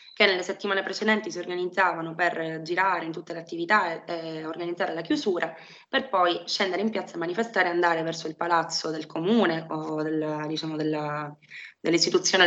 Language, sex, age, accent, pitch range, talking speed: Italian, female, 20-39, native, 160-195 Hz, 175 wpm